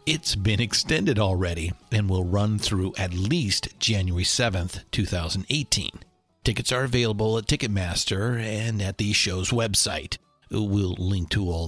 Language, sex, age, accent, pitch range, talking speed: English, male, 50-69, American, 90-115 Hz, 140 wpm